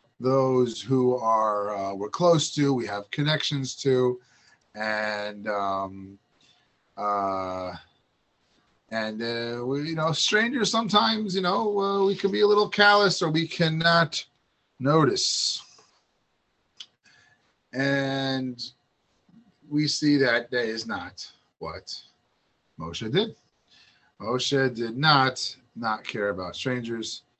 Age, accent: 30-49, American